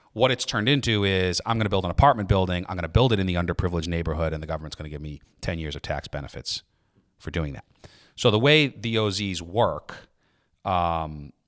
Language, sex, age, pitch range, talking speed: English, male, 30-49, 85-105 Hz, 225 wpm